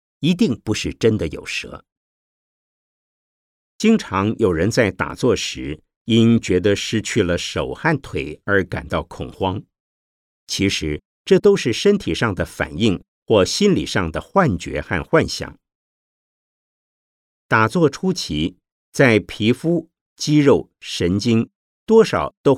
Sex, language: male, Chinese